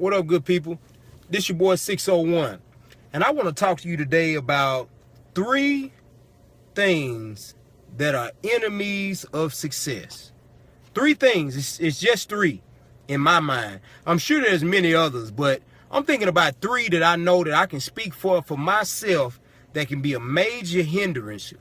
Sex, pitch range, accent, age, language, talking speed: male, 145-195 Hz, American, 30-49, English, 165 wpm